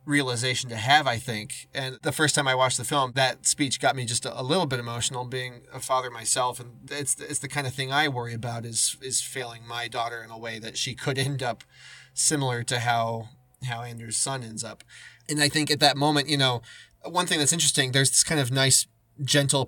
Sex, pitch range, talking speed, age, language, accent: male, 115-135 Hz, 230 wpm, 20-39, English, American